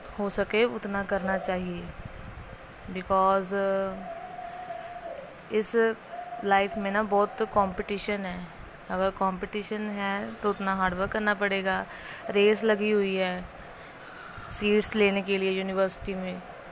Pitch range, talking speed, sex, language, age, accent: 195-225 Hz, 115 wpm, female, Hindi, 20-39, native